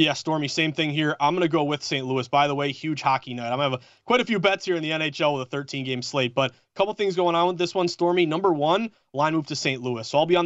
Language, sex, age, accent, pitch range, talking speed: English, male, 20-39, American, 140-170 Hz, 315 wpm